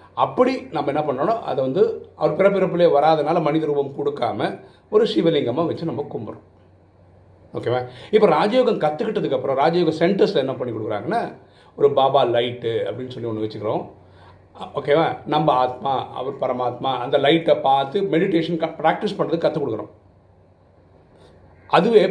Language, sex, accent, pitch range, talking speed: Tamil, male, native, 120-185 Hz, 125 wpm